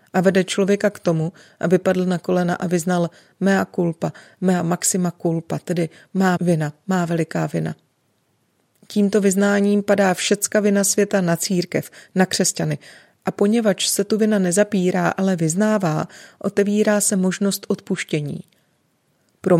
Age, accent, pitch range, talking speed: 30-49, native, 170-195 Hz, 140 wpm